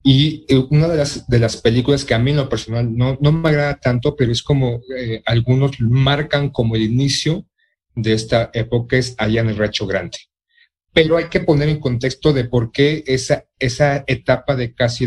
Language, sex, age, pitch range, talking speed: Spanish, male, 40-59, 120-145 Hz, 200 wpm